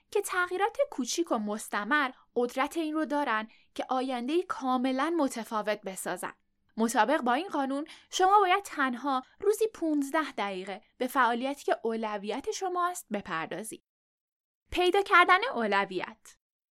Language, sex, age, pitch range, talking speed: Persian, female, 10-29, 220-340 Hz, 120 wpm